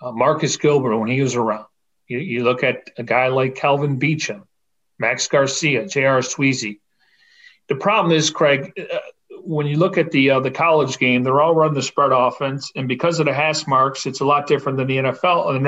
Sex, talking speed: male, 210 wpm